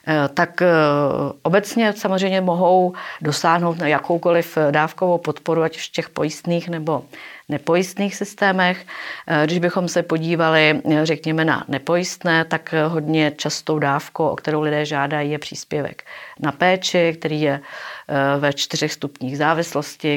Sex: female